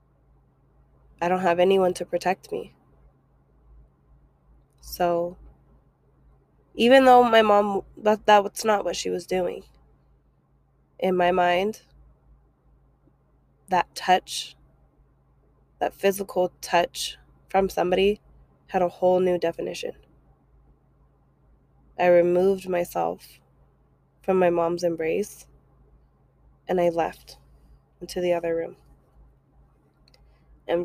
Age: 20-39